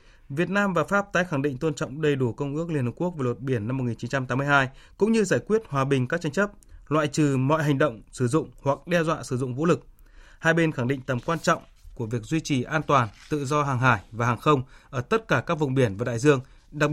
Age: 20-39